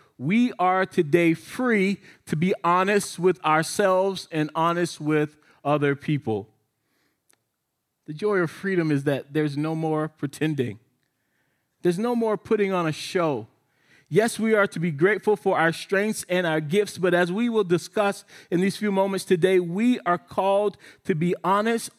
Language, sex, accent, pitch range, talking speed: English, male, American, 140-180 Hz, 160 wpm